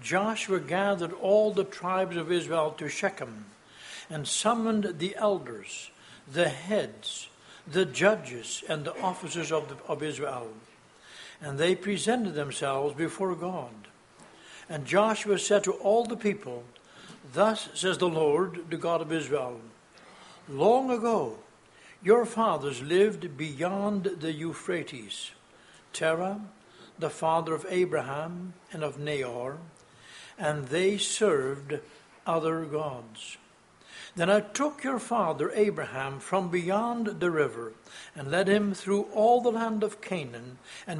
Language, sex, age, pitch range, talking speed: English, male, 60-79, 150-200 Hz, 125 wpm